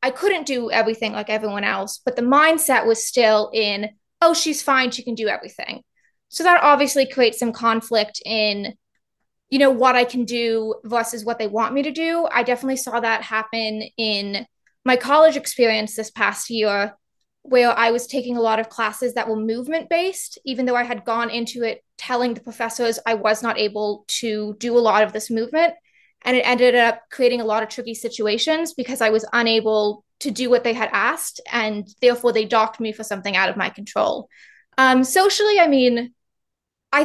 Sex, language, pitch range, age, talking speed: female, English, 225-270 Hz, 20-39, 195 wpm